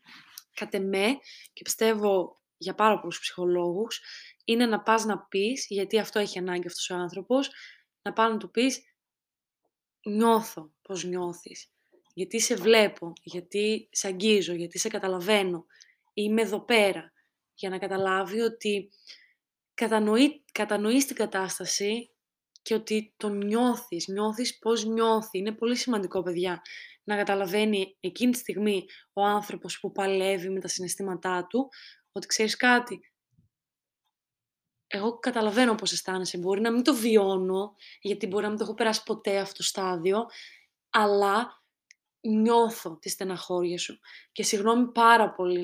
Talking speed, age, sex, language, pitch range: 135 wpm, 20-39, female, Greek, 190-225 Hz